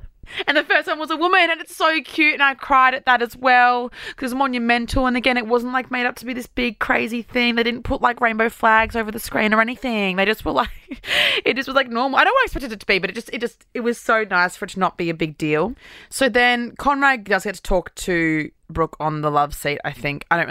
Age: 20-39